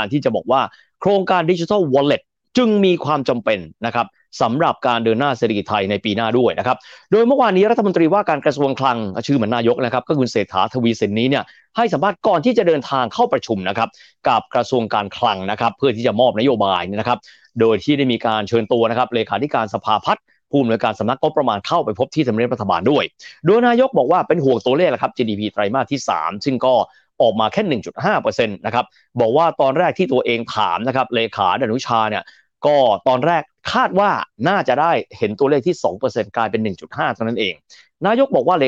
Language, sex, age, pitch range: Thai, male, 30-49, 115-185 Hz